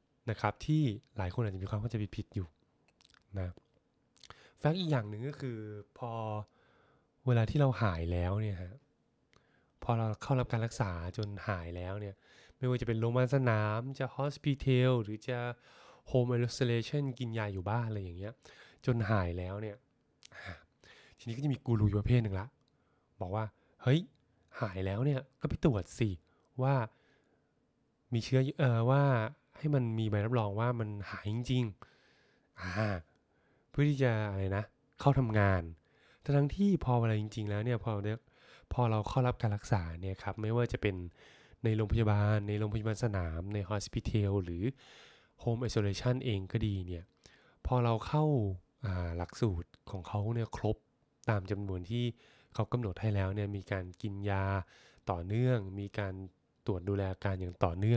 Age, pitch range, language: 20-39, 100-125 Hz, Thai